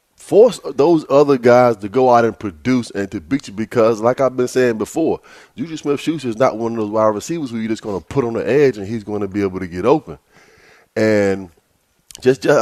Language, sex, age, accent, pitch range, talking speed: English, male, 20-39, American, 100-125 Hz, 230 wpm